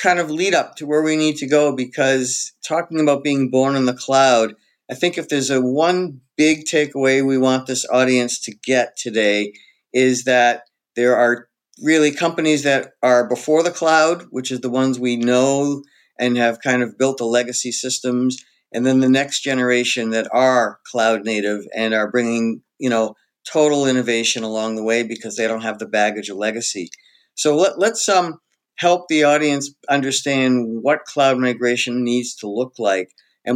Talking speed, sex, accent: 180 wpm, male, American